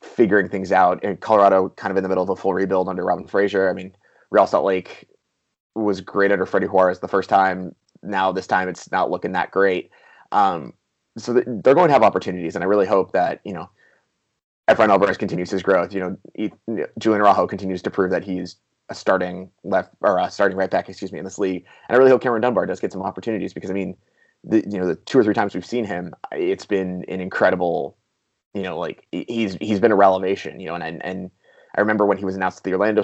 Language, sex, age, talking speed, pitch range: English, male, 20-39, 235 wpm, 95-100 Hz